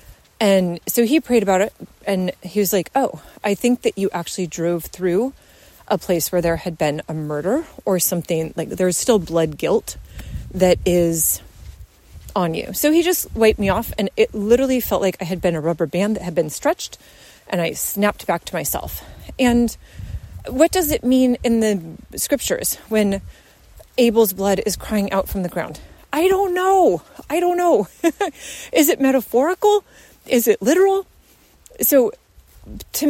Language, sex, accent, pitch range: English, female, American, 180-250 Hz